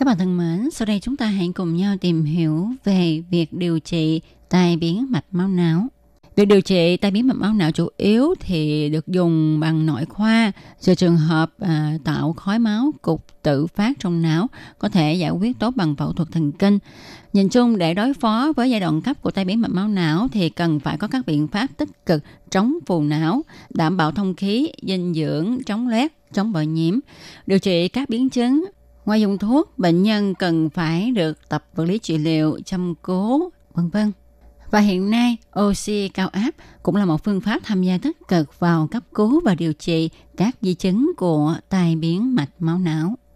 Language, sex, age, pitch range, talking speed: Vietnamese, female, 20-39, 165-225 Hz, 210 wpm